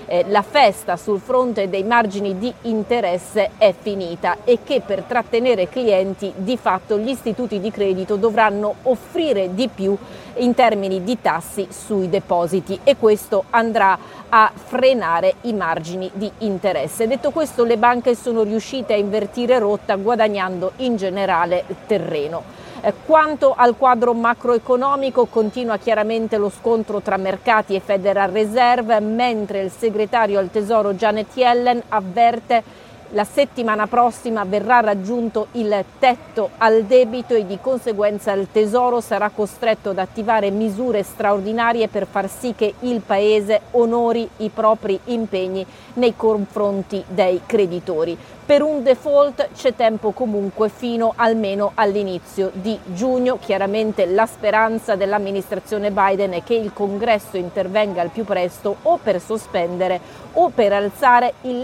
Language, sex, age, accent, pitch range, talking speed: Italian, female, 40-59, native, 200-240 Hz, 135 wpm